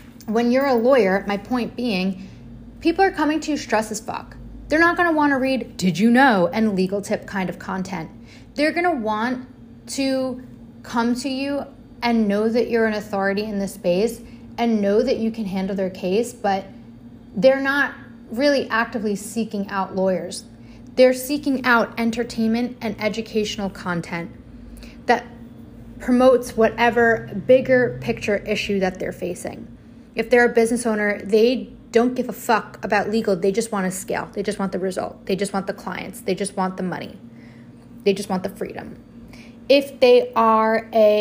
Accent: American